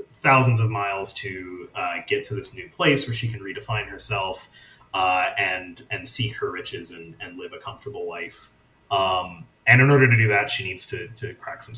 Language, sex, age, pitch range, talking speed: English, male, 30-49, 105-135 Hz, 205 wpm